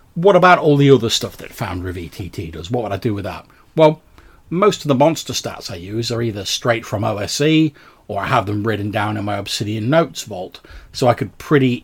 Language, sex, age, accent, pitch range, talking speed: English, male, 40-59, British, 105-135 Hz, 225 wpm